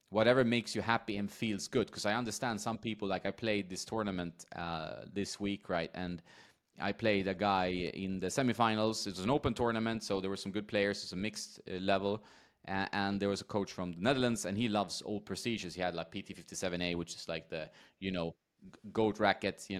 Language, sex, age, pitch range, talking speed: English, male, 30-49, 95-115 Hz, 220 wpm